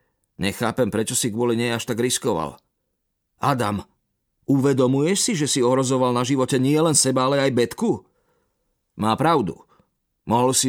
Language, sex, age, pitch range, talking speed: Slovak, male, 40-59, 105-145 Hz, 140 wpm